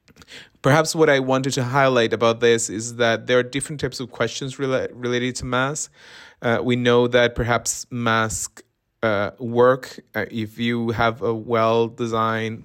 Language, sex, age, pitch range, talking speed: English, male, 30-49, 110-125 Hz, 160 wpm